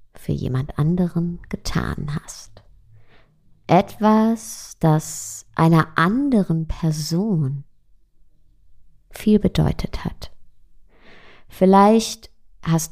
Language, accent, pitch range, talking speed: German, German, 135-180 Hz, 70 wpm